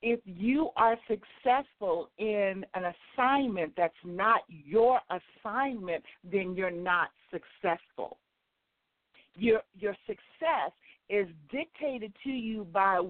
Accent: American